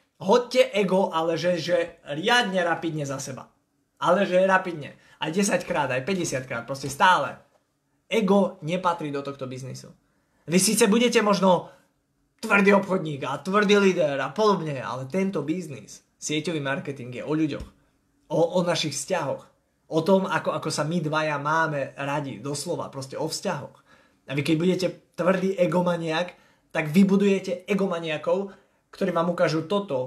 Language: Slovak